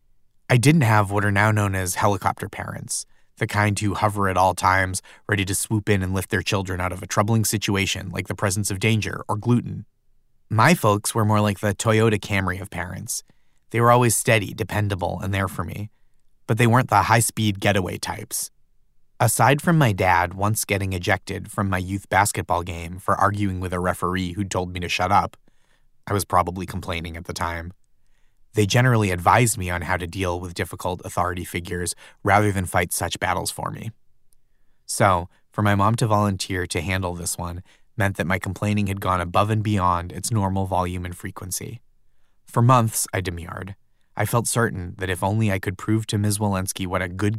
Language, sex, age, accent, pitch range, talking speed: English, male, 30-49, American, 90-110 Hz, 195 wpm